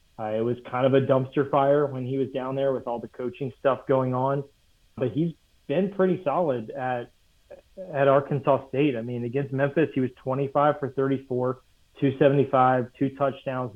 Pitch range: 120-140 Hz